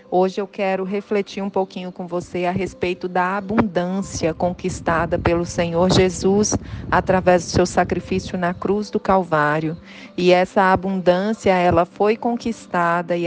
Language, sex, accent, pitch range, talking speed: Portuguese, female, Brazilian, 175-200 Hz, 140 wpm